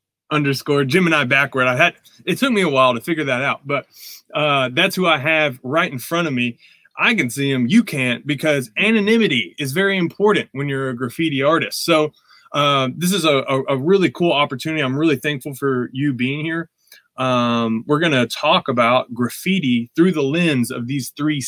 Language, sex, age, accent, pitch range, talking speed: English, male, 20-39, American, 125-155 Hz, 205 wpm